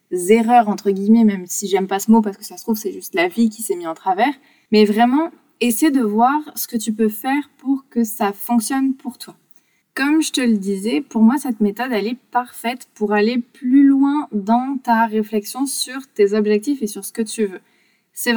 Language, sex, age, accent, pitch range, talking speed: French, female, 20-39, French, 210-270 Hz, 220 wpm